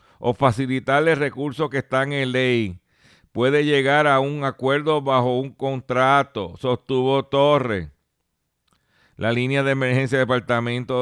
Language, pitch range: Spanish, 115-150 Hz